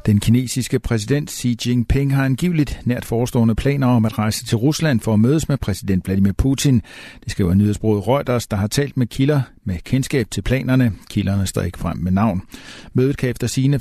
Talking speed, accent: 195 wpm, native